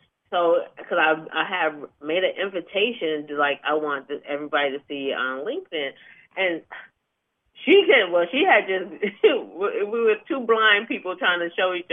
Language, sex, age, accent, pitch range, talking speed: English, female, 30-49, American, 155-225 Hz, 170 wpm